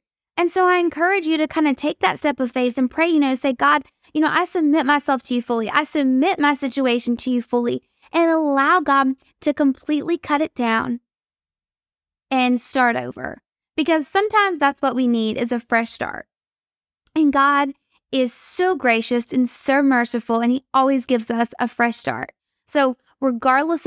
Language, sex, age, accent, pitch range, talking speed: English, female, 20-39, American, 235-290 Hz, 185 wpm